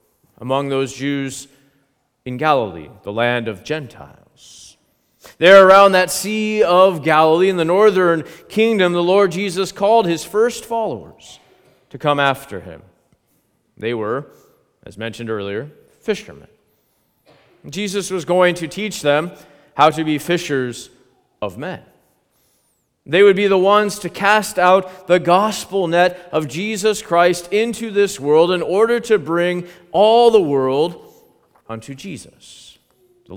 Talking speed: 135 wpm